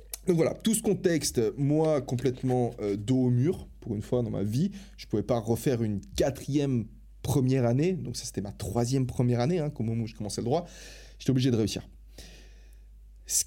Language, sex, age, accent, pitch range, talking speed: French, male, 30-49, French, 105-135 Hz, 205 wpm